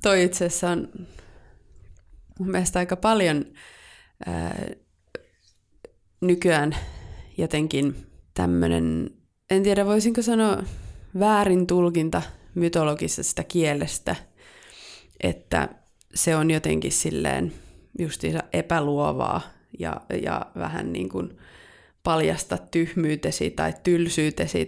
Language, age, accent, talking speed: Finnish, 20-39, native, 85 wpm